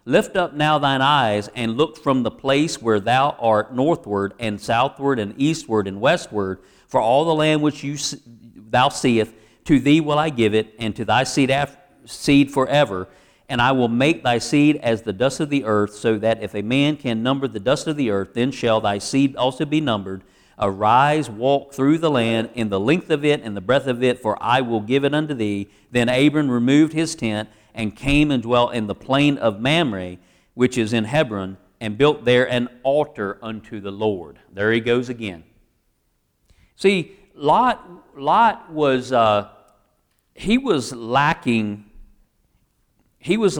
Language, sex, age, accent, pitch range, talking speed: English, male, 50-69, American, 110-150 Hz, 180 wpm